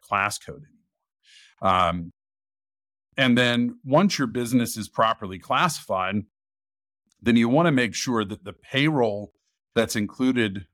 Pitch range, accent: 100-120 Hz, American